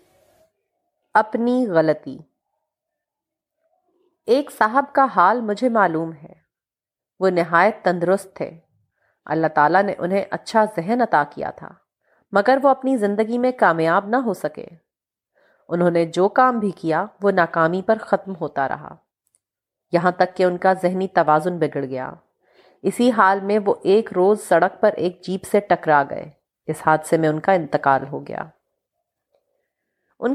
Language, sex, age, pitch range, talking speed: Urdu, female, 30-49, 165-230 Hz, 145 wpm